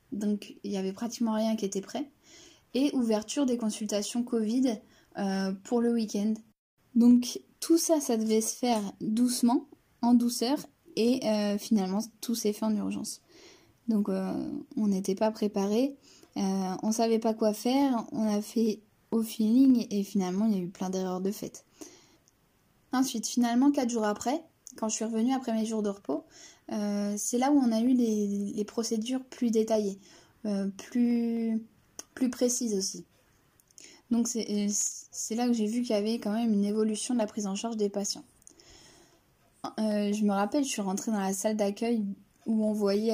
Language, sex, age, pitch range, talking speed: French, female, 10-29, 200-240 Hz, 180 wpm